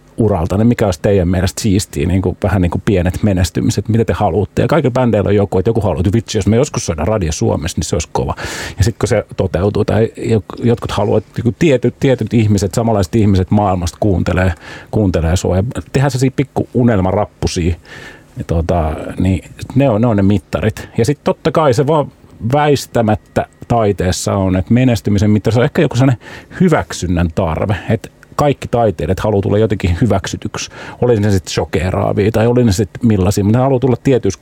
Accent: native